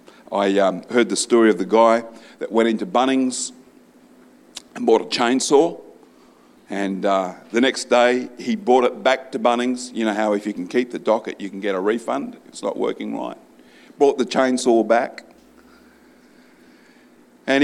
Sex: male